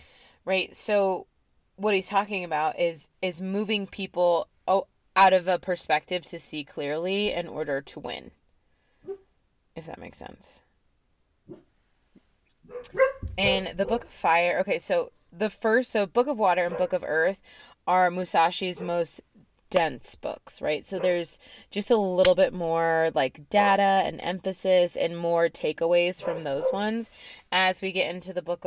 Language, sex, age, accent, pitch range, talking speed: English, female, 20-39, American, 165-200 Hz, 150 wpm